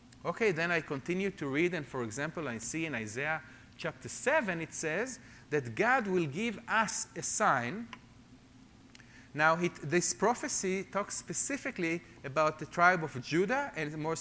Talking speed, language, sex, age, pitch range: 150 wpm, English, male, 40-59, 130-195 Hz